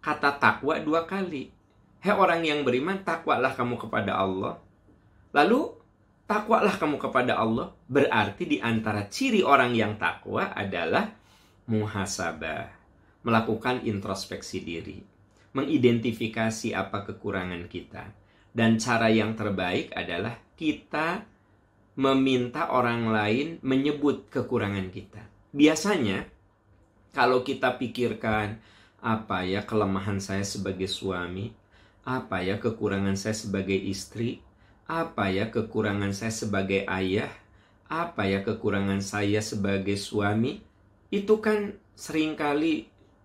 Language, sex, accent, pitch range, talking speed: Indonesian, male, native, 100-120 Hz, 105 wpm